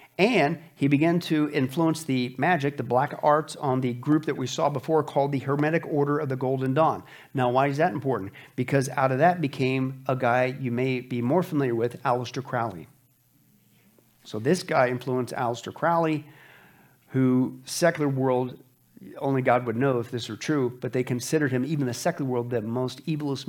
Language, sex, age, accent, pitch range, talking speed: English, male, 50-69, American, 125-145 Hz, 185 wpm